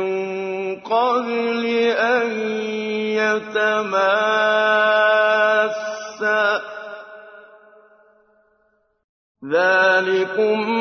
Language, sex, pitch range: Filipino, male, 215-280 Hz